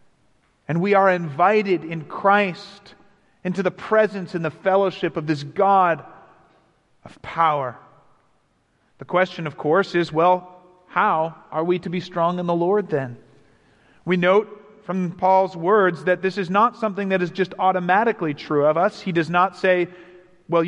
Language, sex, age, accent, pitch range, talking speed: English, male, 40-59, American, 160-200 Hz, 160 wpm